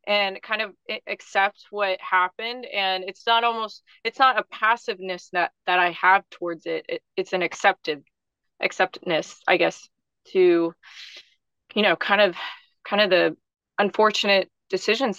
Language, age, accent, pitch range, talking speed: English, 20-39, American, 175-200 Hz, 145 wpm